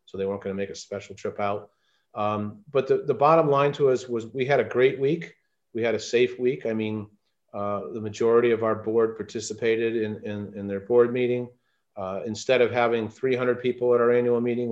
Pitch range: 105-125 Hz